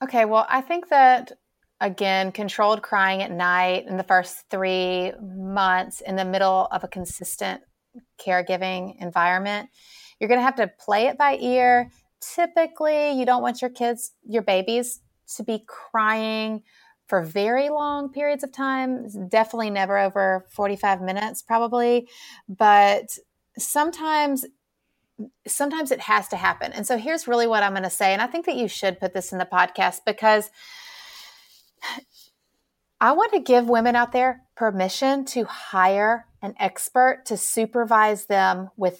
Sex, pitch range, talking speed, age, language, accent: female, 195-250 Hz, 150 wpm, 30-49, English, American